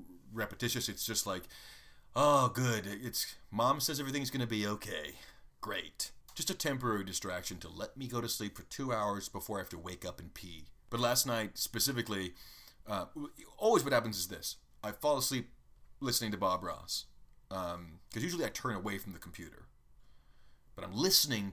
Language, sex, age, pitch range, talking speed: English, male, 30-49, 95-125 Hz, 180 wpm